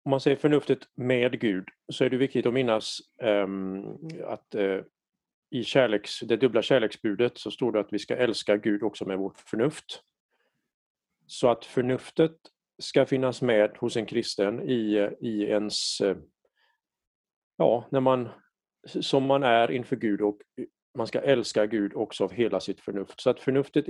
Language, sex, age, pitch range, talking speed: Swedish, male, 40-59, 105-135 Hz, 170 wpm